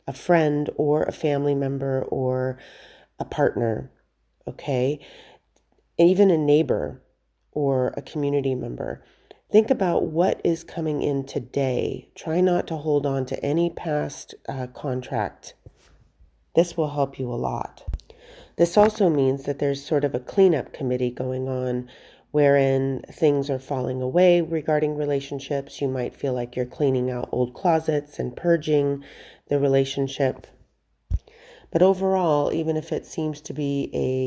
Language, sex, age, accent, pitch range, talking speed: English, female, 30-49, American, 130-160 Hz, 140 wpm